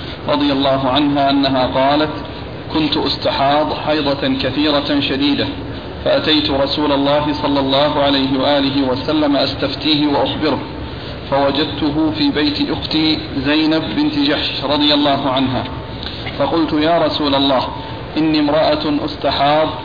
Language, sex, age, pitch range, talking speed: Arabic, male, 40-59, 140-155 Hz, 110 wpm